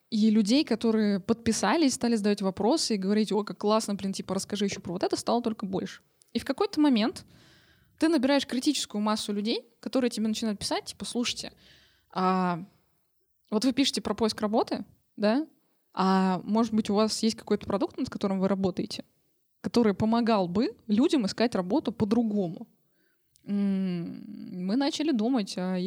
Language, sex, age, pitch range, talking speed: Russian, female, 20-39, 205-255 Hz, 155 wpm